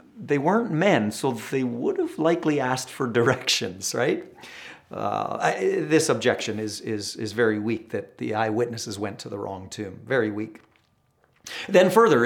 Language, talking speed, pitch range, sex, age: English, 160 wpm, 120-170 Hz, male, 50-69